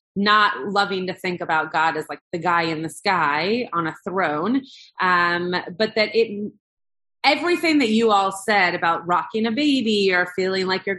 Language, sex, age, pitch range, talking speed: English, female, 30-49, 170-210 Hz, 180 wpm